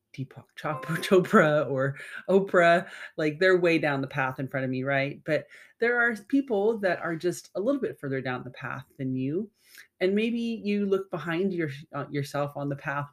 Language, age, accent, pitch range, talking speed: English, 30-49, American, 135-180 Hz, 185 wpm